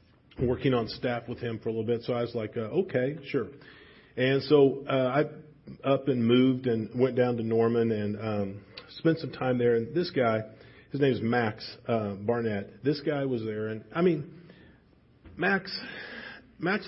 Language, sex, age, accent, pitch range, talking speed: English, male, 40-59, American, 115-145 Hz, 185 wpm